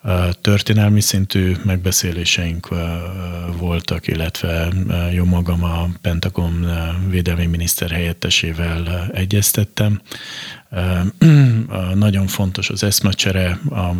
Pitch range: 85-95 Hz